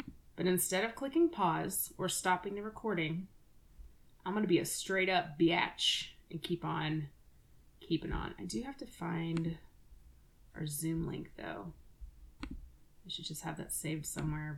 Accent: American